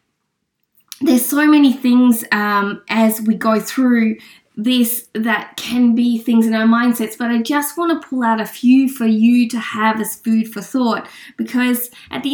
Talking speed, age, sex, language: 180 wpm, 20-39, female, English